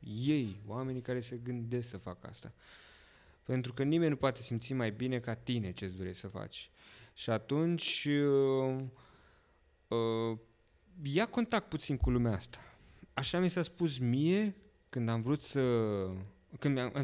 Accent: native